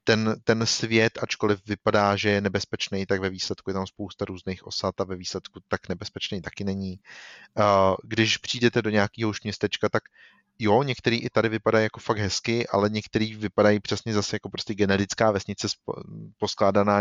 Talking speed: 160 wpm